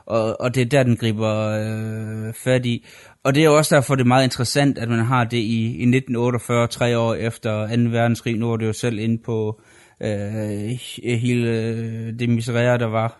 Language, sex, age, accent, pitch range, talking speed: Danish, male, 20-39, native, 110-120 Hz, 190 wpm